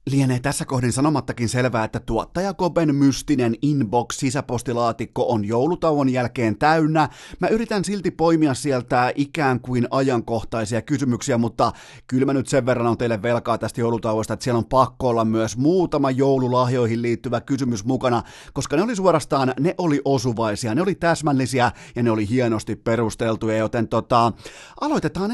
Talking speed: 150 wpm